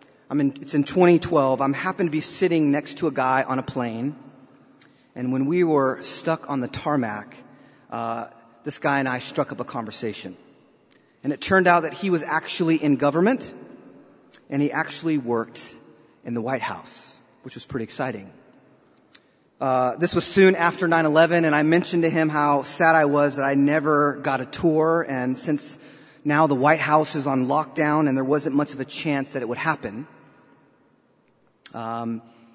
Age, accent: 30-49, American